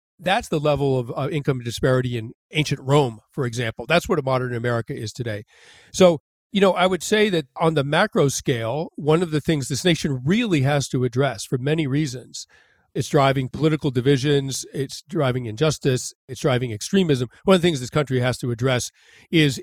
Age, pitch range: 40-59, 130-165 Hz